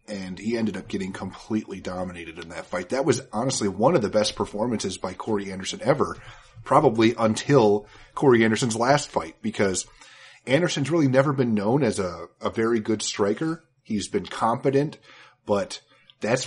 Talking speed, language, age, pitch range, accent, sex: 165 wpm, English, 30-49, 100-125 Hz, American, male